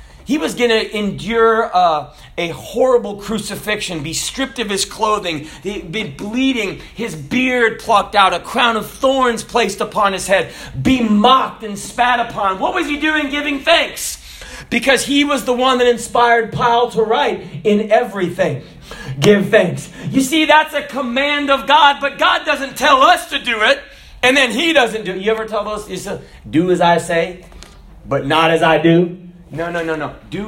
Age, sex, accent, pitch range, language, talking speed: 40-59, male, American, 170-240 Hz, English, 180 wpm